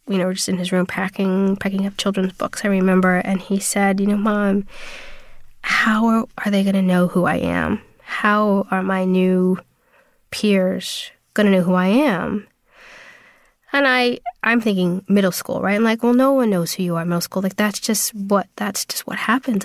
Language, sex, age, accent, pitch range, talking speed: English, female, 20-39, American, 185-215 Hz, 210 wpm